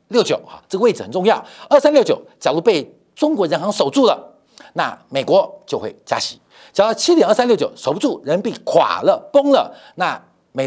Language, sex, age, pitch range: Chinese, male, 50-69, 225-315 Hz